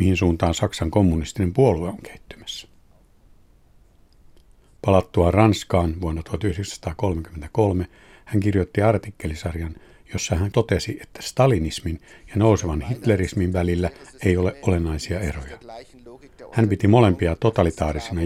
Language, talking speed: Finnish, 100 wpm